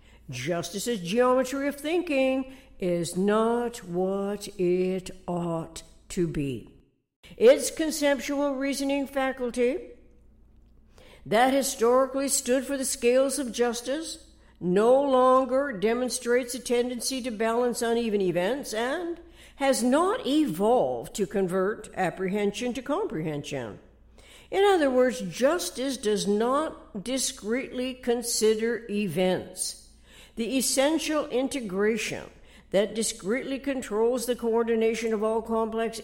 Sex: female